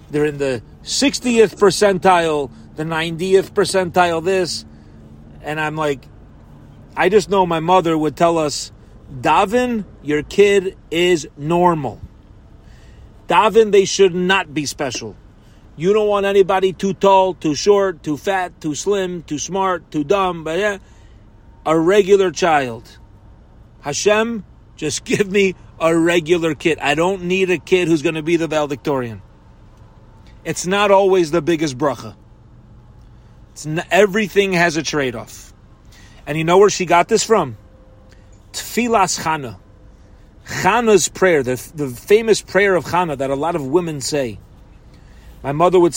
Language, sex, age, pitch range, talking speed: English, male, 40-59, 115-185 Hz, 140 wpm